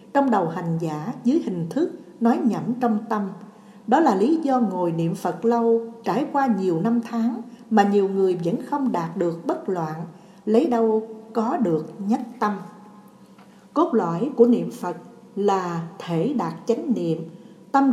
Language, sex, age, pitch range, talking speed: Vietnamese, female, 60-79, 175-240 Hz, 165 wpm